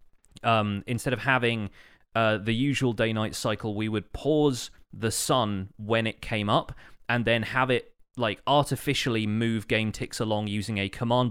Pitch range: 100-125 Hz